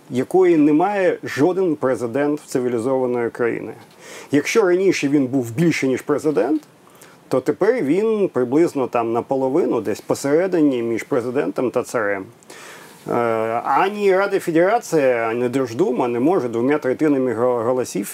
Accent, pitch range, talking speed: native, 125-160 Hz, 115 wpm